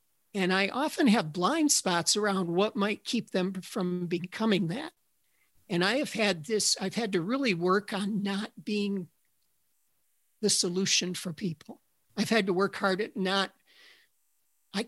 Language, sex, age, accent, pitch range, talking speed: English, male, 50-69, American, 185-215 Hz, 155 wpm